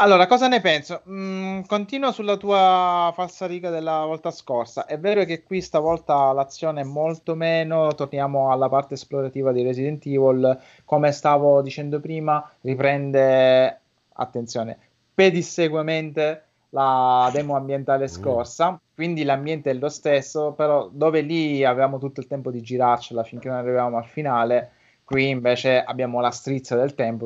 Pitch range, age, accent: 120-150 Hz, 20-39, native